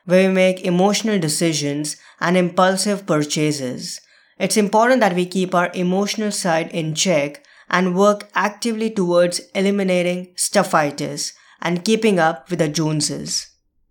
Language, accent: English, Indian